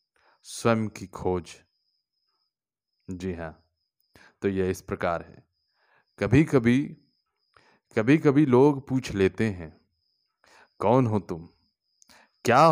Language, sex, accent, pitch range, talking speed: Hindi, male, native, 95-130 Hz, 125 wpm